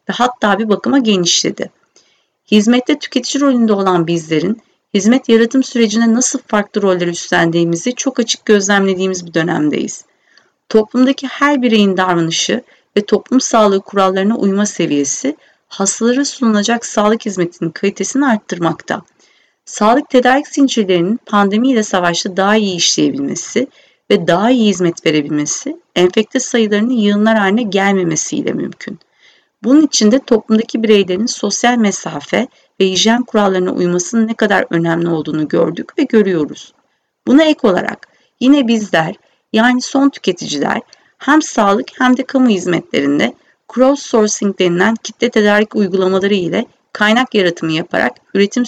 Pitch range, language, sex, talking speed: 190-245 Hz, Turkish, female, 120 wpm